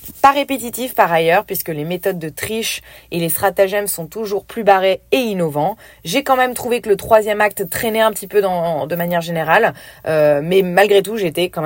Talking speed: 200 wpm